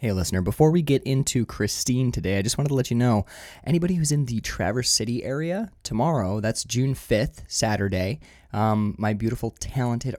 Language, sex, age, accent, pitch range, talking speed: English, male, 20-39, American, 95-120 Hz, 185 wpm